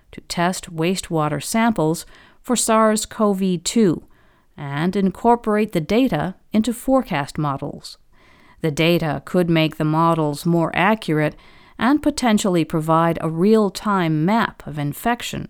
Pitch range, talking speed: 160-205 Hz, 110 wpm